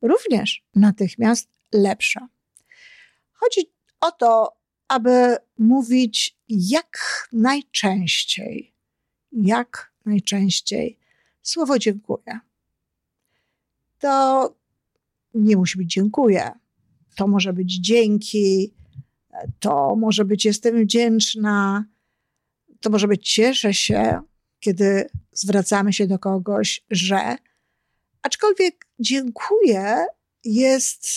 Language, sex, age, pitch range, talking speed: Polish, female, 50-69, 200-235 Hz, 80 wpm